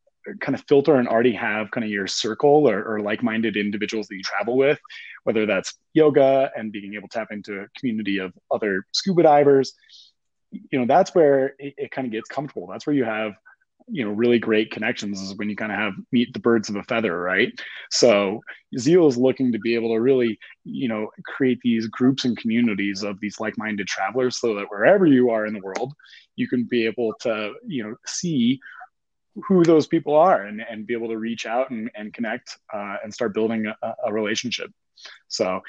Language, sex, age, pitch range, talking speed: English, male, 20-39, 110-140 Hz, 205 wpm